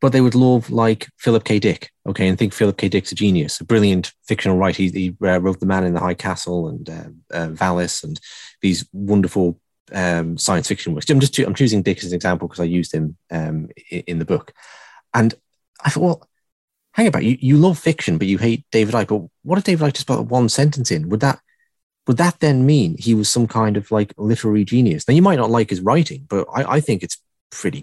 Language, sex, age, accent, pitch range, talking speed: English, male, 30-49, British, 100-145 Hz, 235 wpm